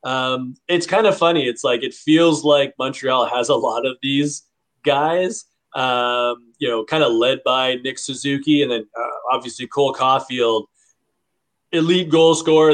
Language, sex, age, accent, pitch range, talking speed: English, male, 30-49, American, 125-155 Hz, 165 wpm